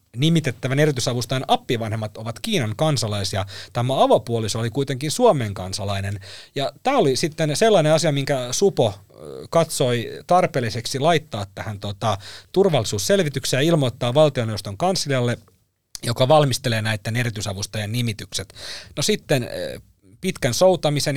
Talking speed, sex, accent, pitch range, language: 110 wpm, male, native, 110-145 Hz, Finnish